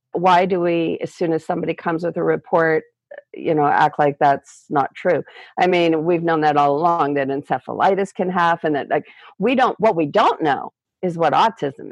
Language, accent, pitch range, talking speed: English, American, 155-225 Hz, 200 wpm